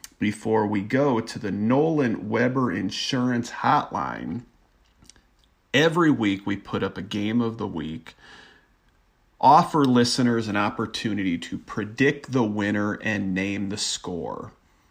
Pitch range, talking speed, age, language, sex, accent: 100-120 Hz, 125 wpm, 40-59, English, male, American